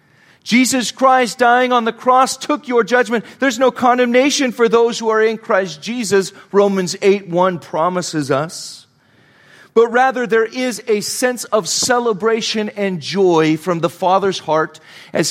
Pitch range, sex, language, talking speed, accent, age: 135-190 Hz, male, English, 150 wpm, American, 40-59